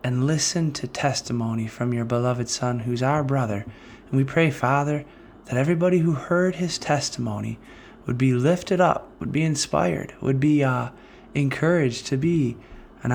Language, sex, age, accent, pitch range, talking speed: English, male, 20-39, American, 120-145 Hz, 160 wpm